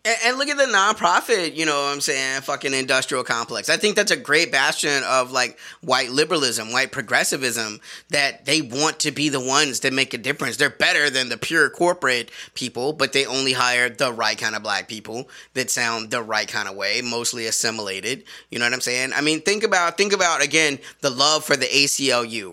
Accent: American